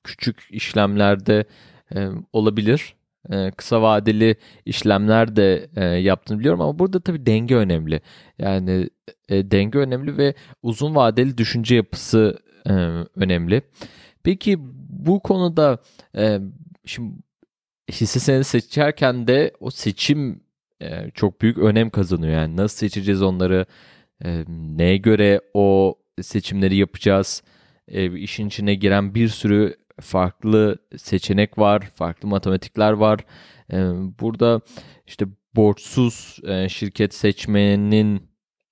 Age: 30-49